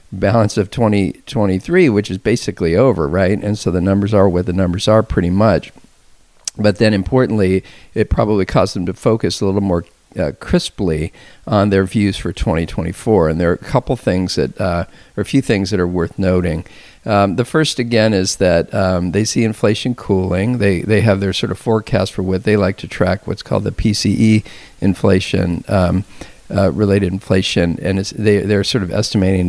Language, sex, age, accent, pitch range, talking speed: English, male, 50-69, American, 90-110 Hz, 185 wpm